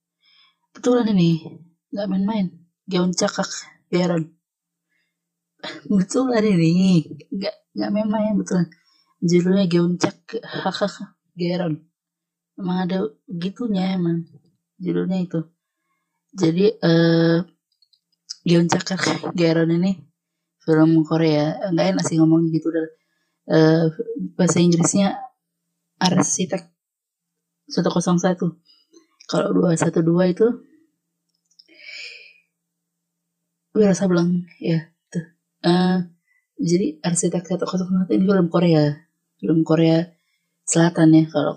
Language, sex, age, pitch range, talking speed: Indonesian, female, 20-39, 155-180 Hz, 95 wpm